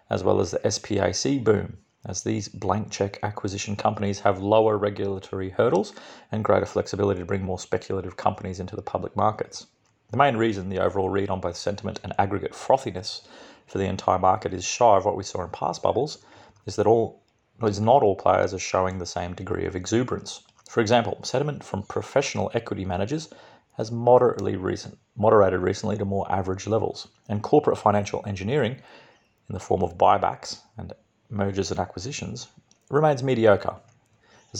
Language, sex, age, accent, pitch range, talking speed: English, male, 30-49, Australian, 95-110 Hz, 170 wpm